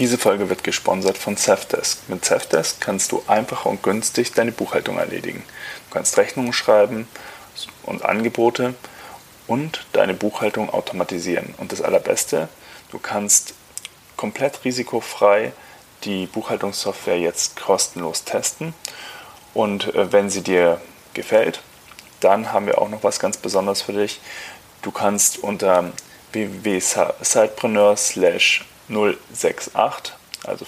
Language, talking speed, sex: German, 115 wpm, male